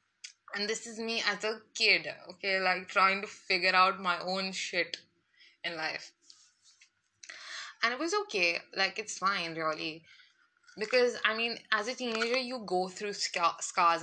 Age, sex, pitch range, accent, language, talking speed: 20-39, female, 185-245 Hz, Indian, English, 155 wpm